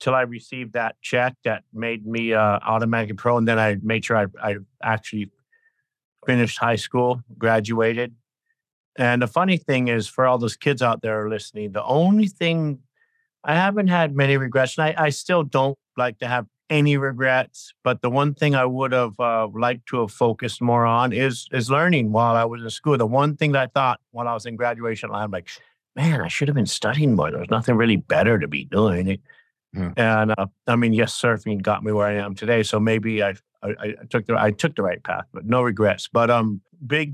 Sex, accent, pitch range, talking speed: male, American, 115-145 Hz, 215 wpm